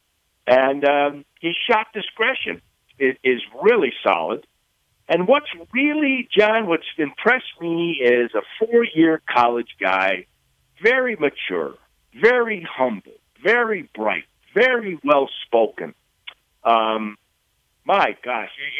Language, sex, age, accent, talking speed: English, male, 50-69, American, 100 wpm